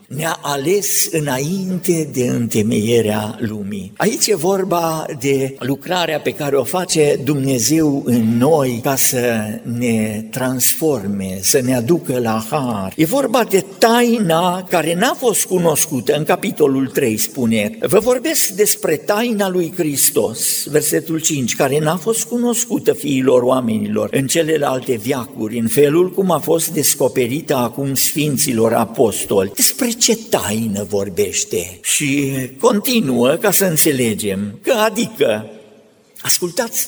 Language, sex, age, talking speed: Romanian, male, 50-69, 125 wpm